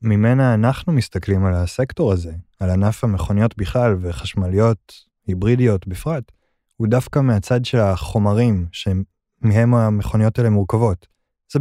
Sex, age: male, 20-39